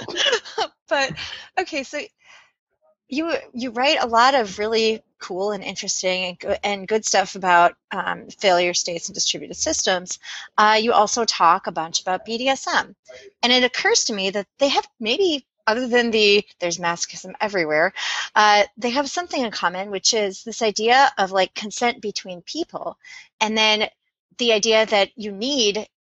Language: English